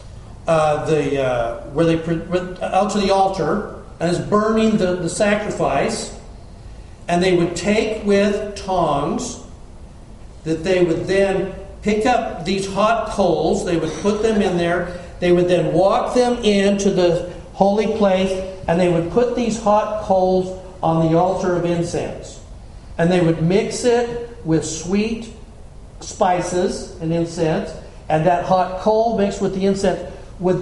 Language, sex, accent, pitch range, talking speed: English, male, American, 170-205 Hz, 150 wpm